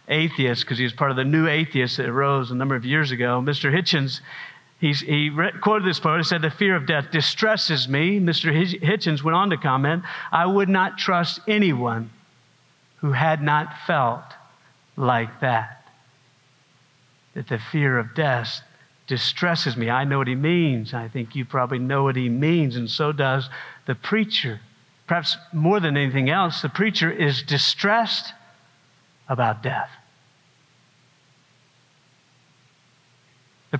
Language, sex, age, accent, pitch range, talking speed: English, male, 50-69, American, 135-190 Hz, 150 wpm